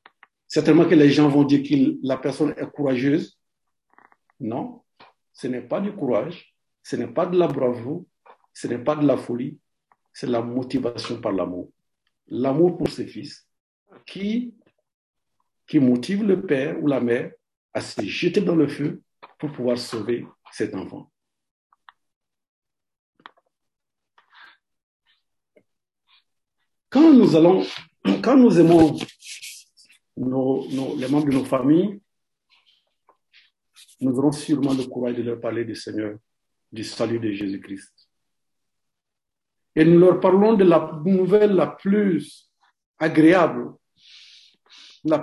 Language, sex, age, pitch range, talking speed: French, male, 50-69, 140-195 Hz, 125 wpm